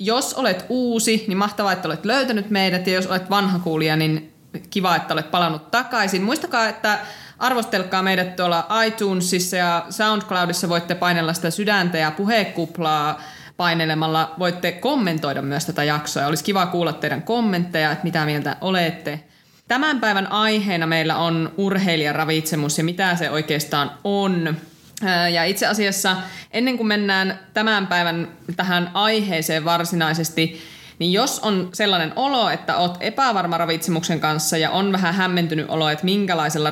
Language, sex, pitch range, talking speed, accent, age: Finnish, female, 160-195 Hz, 145 wpm, native, 20-39